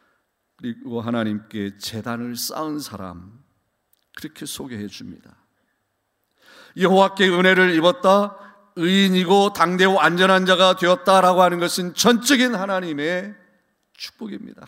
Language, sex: Korean, male